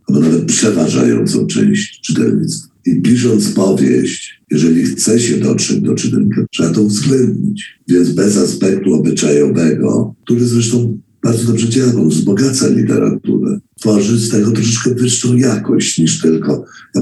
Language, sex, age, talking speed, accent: Polish, male, 60-79, 135 wpm, native